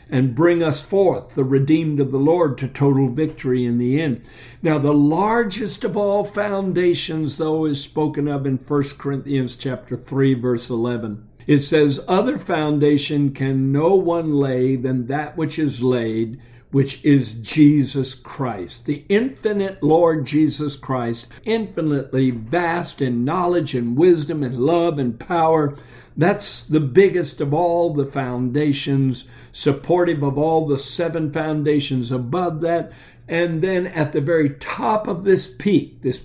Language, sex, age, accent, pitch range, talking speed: English, male, 60-79, American, 130-170 Hz, 145 wpm